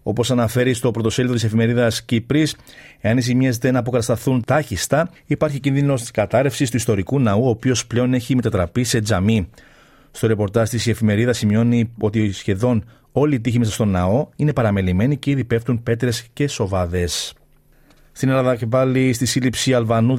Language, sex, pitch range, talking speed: Greek, male, 115-145 Hz, 165 wpm